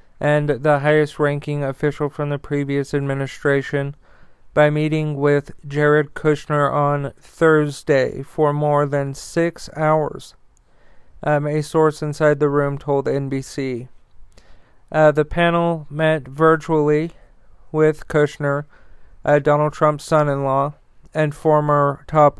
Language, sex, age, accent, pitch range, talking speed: English, male, 40-59, American, 145-155 Hz, 115 wpm